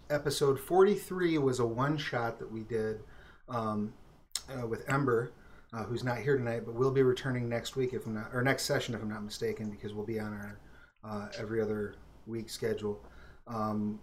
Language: English